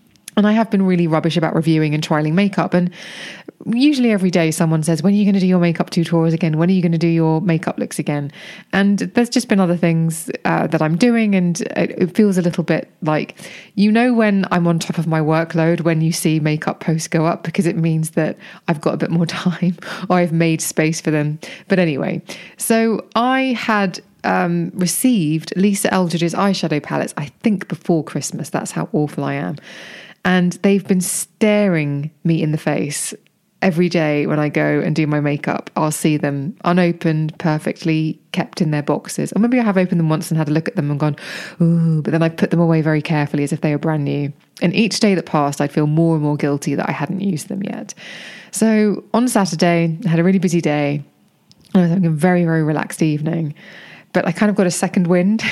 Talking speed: 220 wpm